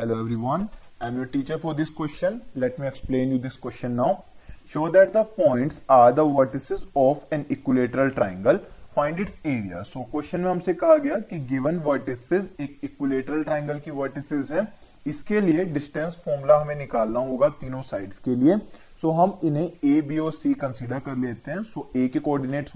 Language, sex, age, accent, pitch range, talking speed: Hindi, male, 20-39, native, 130-165 Hz, 185 wpm